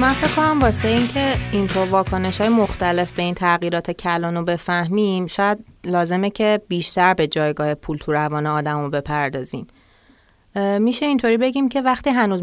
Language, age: Persian, 30-49